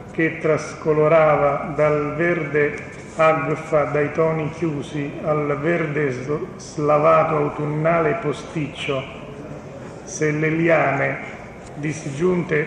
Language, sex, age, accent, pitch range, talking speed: Italian, male, 40-59, native, 150-165 Hz, 80 wpm